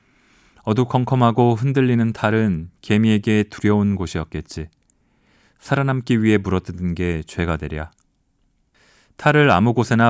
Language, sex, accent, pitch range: Korean, male, native, 100-130 Hz